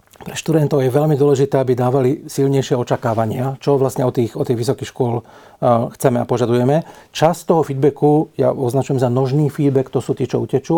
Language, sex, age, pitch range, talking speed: Slovak, male, 40-59, 130-155 Hz, 185 wpm